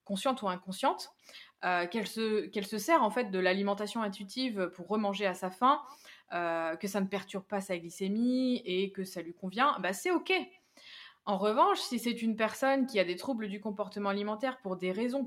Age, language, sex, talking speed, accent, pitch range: 20-39, French, female, 195 wpm, French, 185-230 Hz